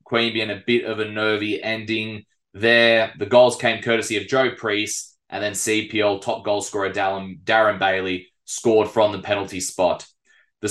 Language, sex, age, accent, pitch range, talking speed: English, male, 20-39, Australian, 105-115 Hz, 165 wpm